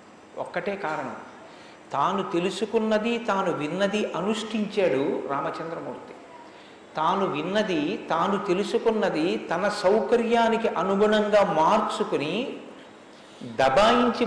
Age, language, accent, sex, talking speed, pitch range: 50-69, Telugu, native, male, 70 wpm, 185-230 Hz